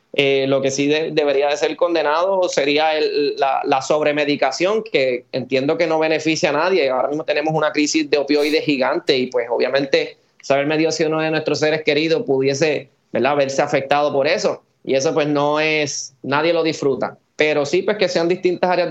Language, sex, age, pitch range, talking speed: Spanish, male, 20-39, 140-165 Hz, 190 wpm